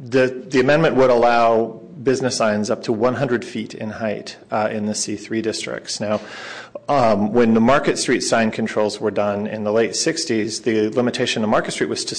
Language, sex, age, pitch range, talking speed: English, male, 40-59, 110-120 Hz, 190 wpm